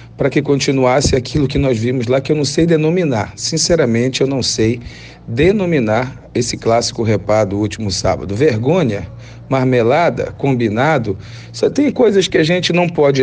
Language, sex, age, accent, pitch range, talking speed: Portuguese, male, 40-59, Brazilian, 110-145 Hz, 160 wpm